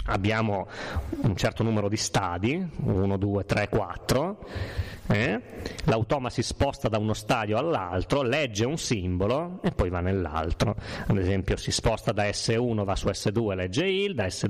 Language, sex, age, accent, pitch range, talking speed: Italian, male, 30-49, native, 100-130 Hz, 155 wpm